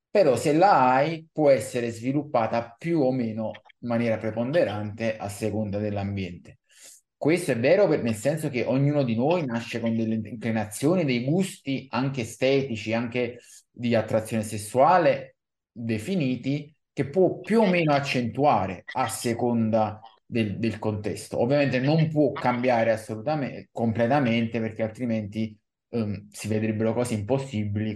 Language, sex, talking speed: Italian, male, 135 wpm